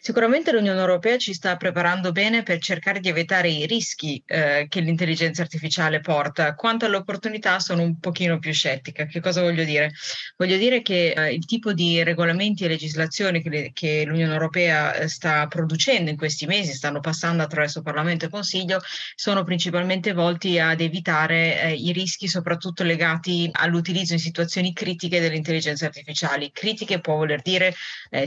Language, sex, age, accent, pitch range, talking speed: Italian, female, 20-39, native, 155-180 Hz, 160 wpm